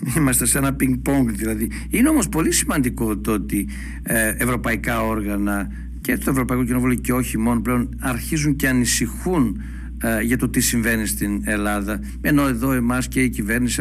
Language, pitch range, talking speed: Greek, 110-135 Hz, 150 wpm